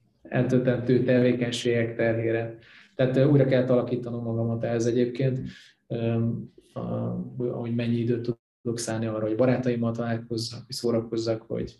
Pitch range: 115-130 Hz